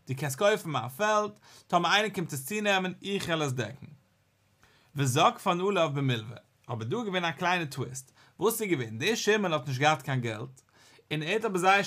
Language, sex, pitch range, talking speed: English, male, 135-200 Hz, 130 wpm